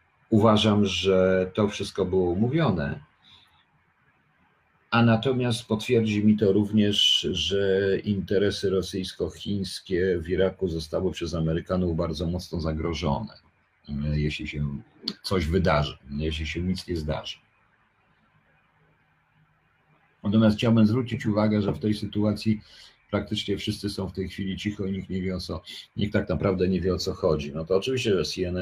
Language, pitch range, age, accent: Polish, 80-105 Hz, 50-69, native